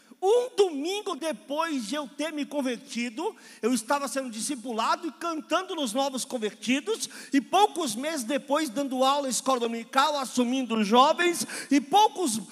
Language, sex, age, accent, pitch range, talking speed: Portuguese, male, 50-69, Brazilian, 235-310 Hz, 145 wpm